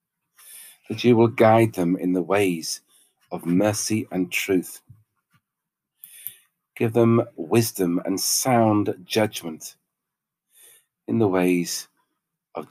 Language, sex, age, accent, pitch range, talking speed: English, male, 40-59, British, 95-150 Hz, 105 wpm